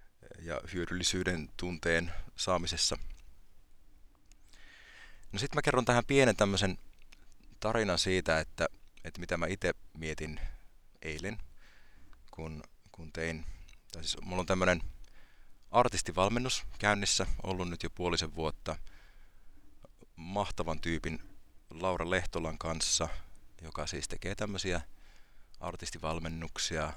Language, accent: Finnish, native